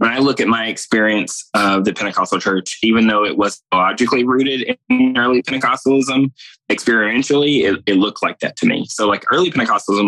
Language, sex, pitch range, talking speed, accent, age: English, male, 105-120 Hz, 185 wpm, American, 20-39